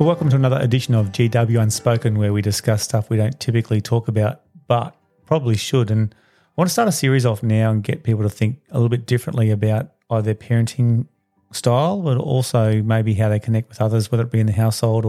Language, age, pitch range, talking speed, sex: English, 30-49, 110-130 Hz, 225 wpm, male